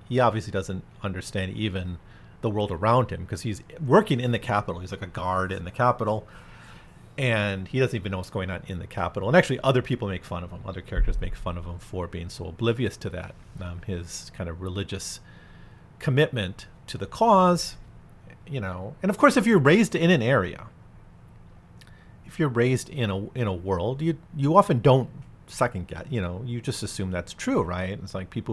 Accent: American